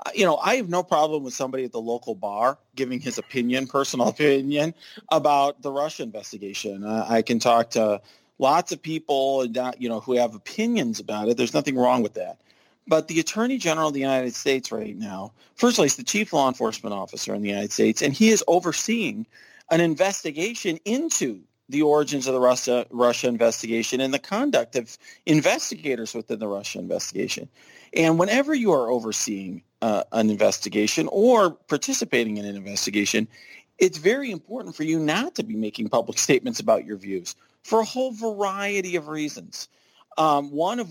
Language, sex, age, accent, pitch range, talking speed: English, male, 40-59, American, 115-180 Hz, 180 wpm